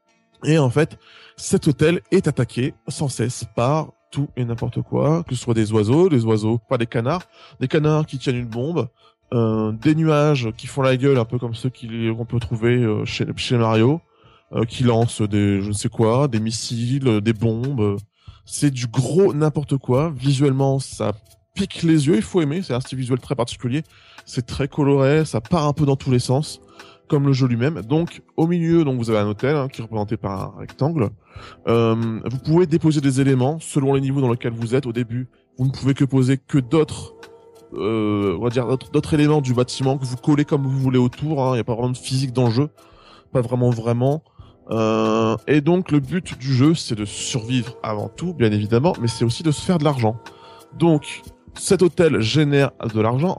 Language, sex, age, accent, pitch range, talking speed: French, male, 20-39, French, 115-150 Hz, 210 wpm